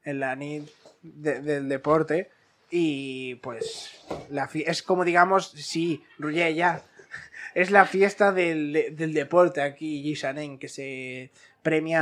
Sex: male